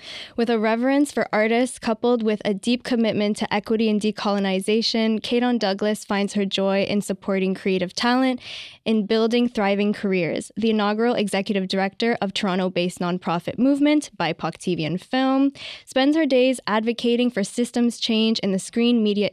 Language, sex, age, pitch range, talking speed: English, female, 10-29, 195-235 Hz, 160 wpm